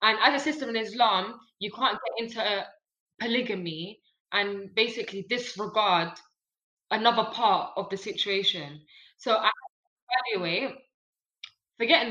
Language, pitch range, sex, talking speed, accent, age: English, 185-240 Hz, female, 110 wpm, British, 10-29